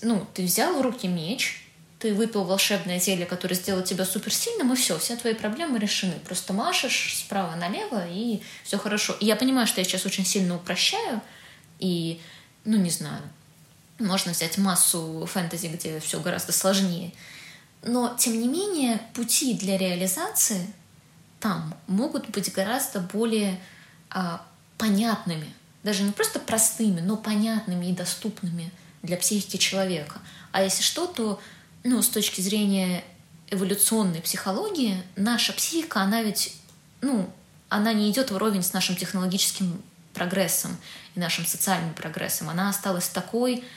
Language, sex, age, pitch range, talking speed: Russian, female, 20-39, 180-215 Hz, 140 wpm